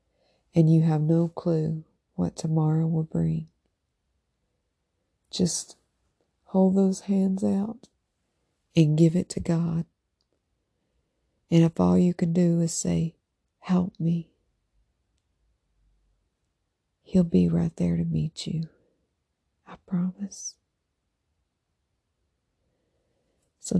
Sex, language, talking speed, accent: female, English, 100 wpm, American